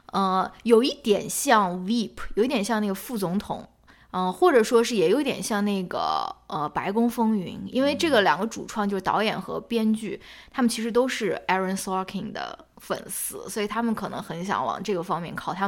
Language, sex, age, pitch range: Chinese, female, 20-39, 190-230 Hz